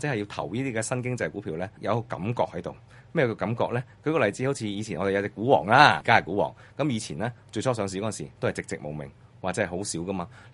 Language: Chinese